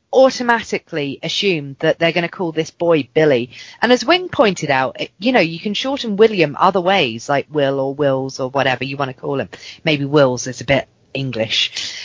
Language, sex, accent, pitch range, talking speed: English, female, British, 140-205 Hz, 200 wpm